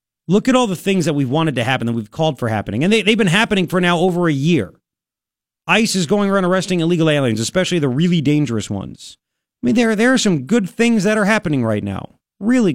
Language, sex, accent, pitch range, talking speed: English, male, American, 130-185 Hz, 245 wpm